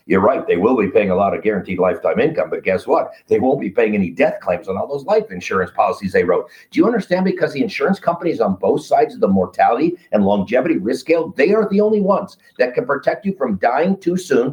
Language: English